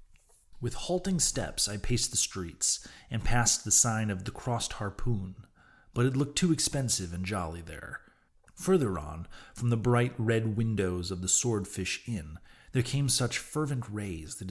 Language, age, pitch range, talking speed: English, 30-49, 90-115 Hz, 165 wpm